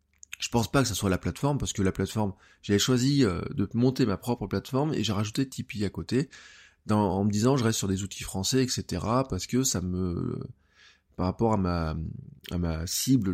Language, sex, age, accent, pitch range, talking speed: French, male, 20-39, French, 95-130 Hz, 210 wpm